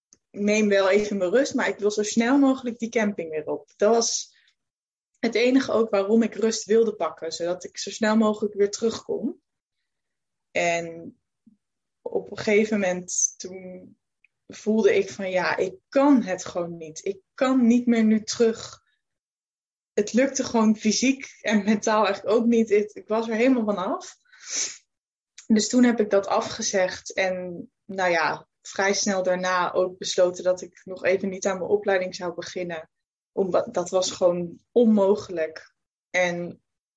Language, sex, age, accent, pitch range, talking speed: Dutch, female, 20-39, Dutch, 185-230 Hz, 160 wpm